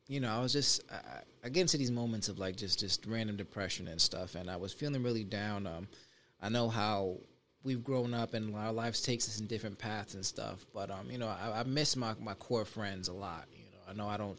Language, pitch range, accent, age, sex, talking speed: English, 95-120 Hz, American, 20-39, male, 255 wpm